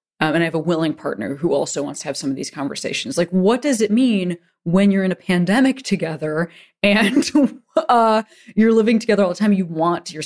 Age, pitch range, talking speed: 20-39, 160-210 Hz, 220 wpm